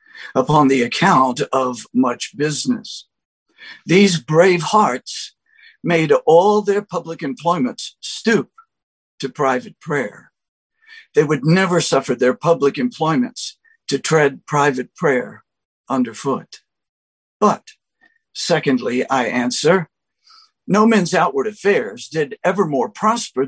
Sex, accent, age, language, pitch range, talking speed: male, American, 60-79, English, 145-225 Hz, 105 wpm